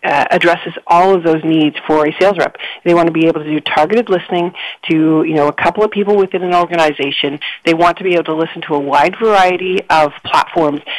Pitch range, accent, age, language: 155-185 Hz, American, 40-59, English